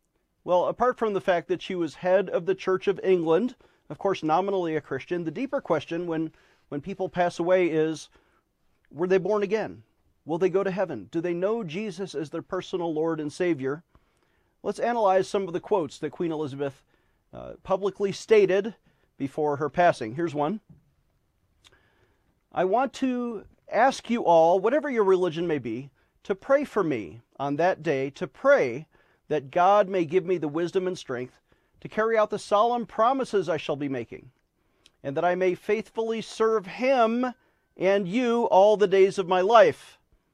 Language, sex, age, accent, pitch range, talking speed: English, male, 40-59, American, 165-210 Hz, 175 wpm